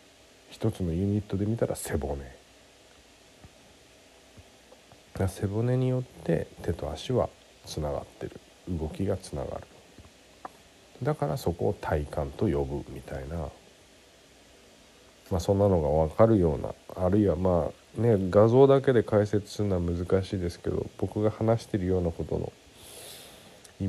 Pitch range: 80-105 Hz